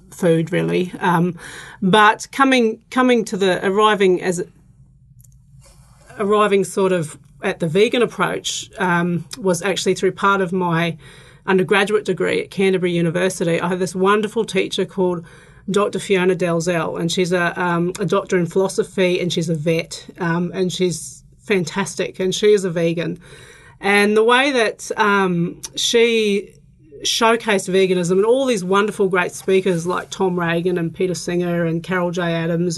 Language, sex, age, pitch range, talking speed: English, female, 40-59, 170-200 Hz, 150 wpm